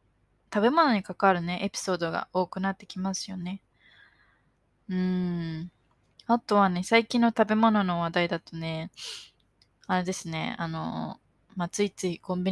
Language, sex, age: Japanese, female, 20-39